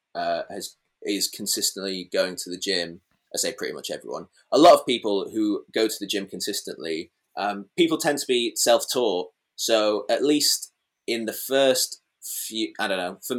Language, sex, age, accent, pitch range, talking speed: English, male, 20-39, British, 95-125 Hz, 180 wpm